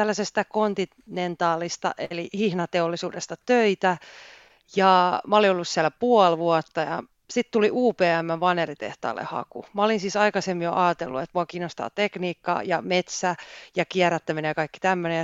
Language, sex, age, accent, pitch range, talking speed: Finnish, female, 30-49, native, 165-205 Hz, 140 wpm